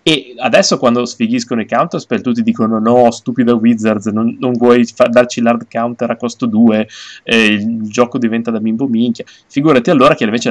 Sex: male